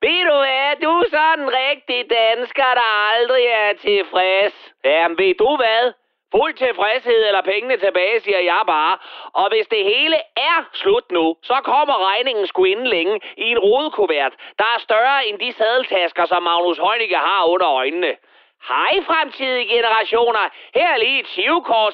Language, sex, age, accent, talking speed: Danish, male, 30-49, native, 165 wpm